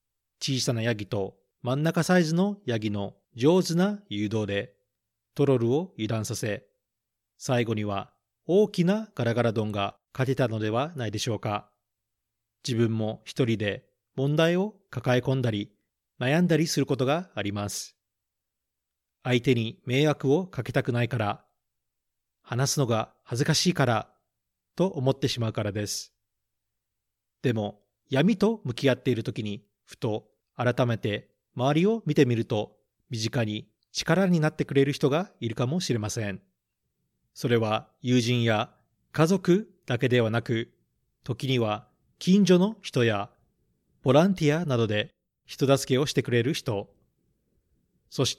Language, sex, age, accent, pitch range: Japanese, male, 40-59, native, 110-145 Hz